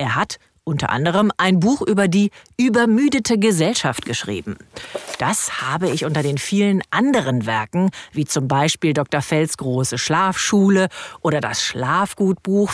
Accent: German